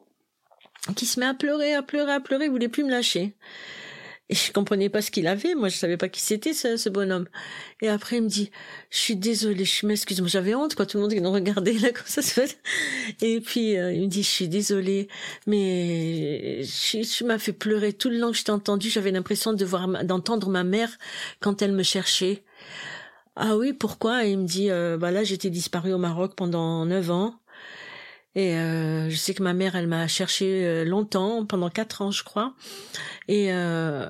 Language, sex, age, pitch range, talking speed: French, female, 50-69, 175-210 Hz, 220 wpm